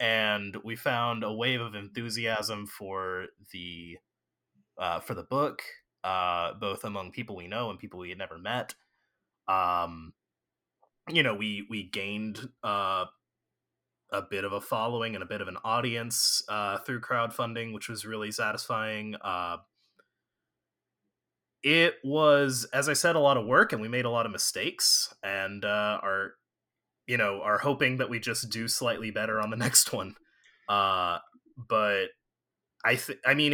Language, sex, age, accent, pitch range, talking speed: English, male, 30-49, American, 100-125 Hz, 160 wpm